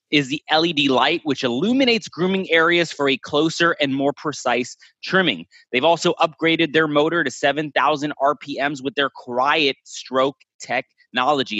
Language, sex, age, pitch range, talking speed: English, male, 30-49, 140-180 Hz, 145 wpm